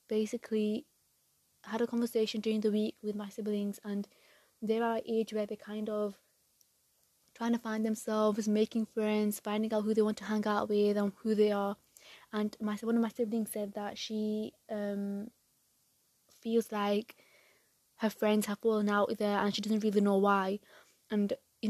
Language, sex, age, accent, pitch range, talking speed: English, female, 20-39, British, 210-225 Hz, 175 wpm